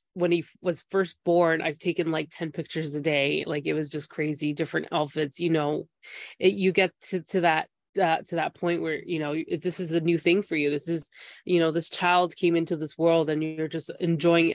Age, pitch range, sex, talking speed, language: 20-39, 160-190 Hz, female, 225 wpm, English